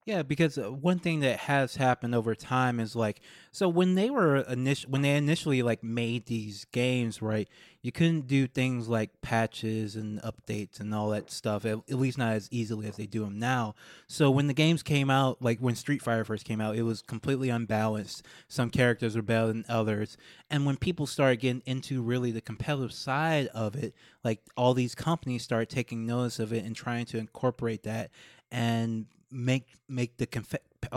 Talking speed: 195 wpm